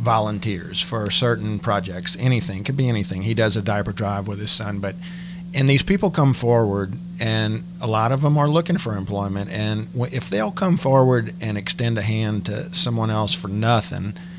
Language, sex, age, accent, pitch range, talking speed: English, male, 50-69, American, 105-135 Hz, 190 wpm